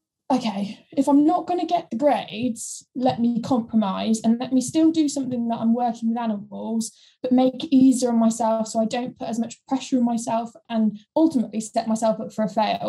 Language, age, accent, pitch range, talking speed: English, 10-29, British, 220-250 Hz, 215 wpm